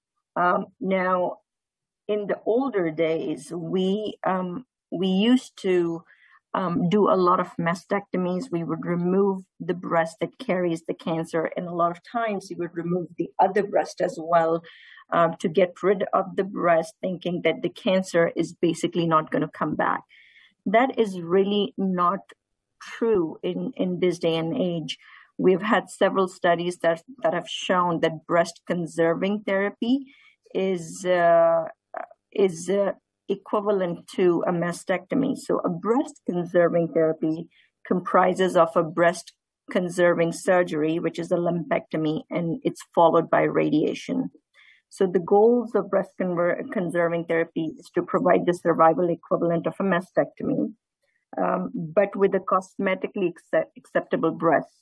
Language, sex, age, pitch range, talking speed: English, female, 50-69, 170-200 Hz, 140 wpm